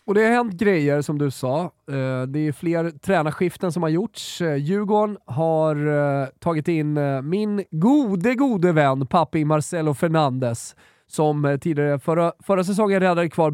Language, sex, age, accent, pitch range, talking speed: Swedish, male, 20-39, native, 135-175 Hz, 145 wpm